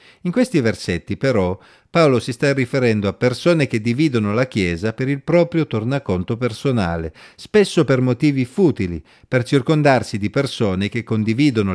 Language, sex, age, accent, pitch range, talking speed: Italian, male, 50-69, native, 110-155 Hz, 150 wpm